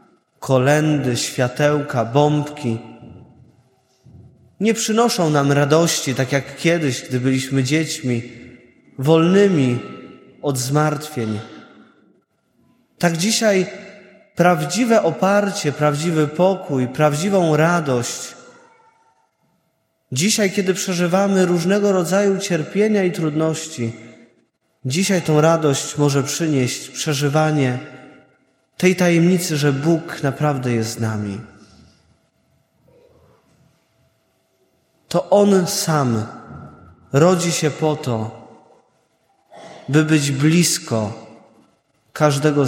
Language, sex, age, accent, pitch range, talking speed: Polish, male, 20-39, native, 130-185 Hz, 80 wpm